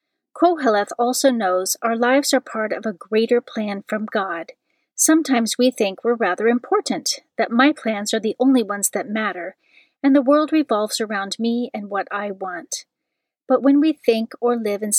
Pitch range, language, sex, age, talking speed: 210-265 Hz, English, female, 40-59, 180 wpm